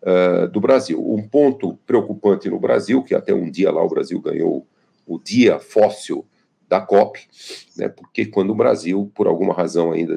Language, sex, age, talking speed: Portuguese, male, 50-69, 175 wpm